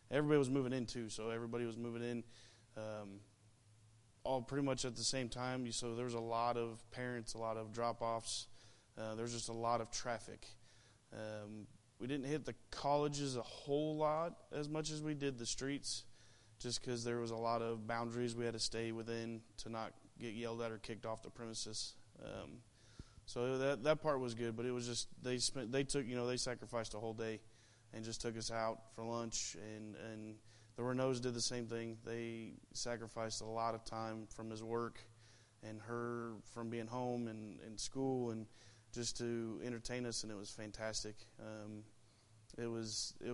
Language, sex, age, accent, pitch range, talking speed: English, male, 20-39, American, 110-120 Hz, 200 wpm